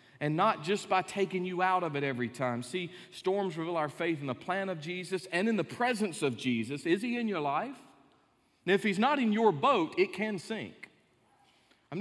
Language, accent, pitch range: English, American, 130-185 Hz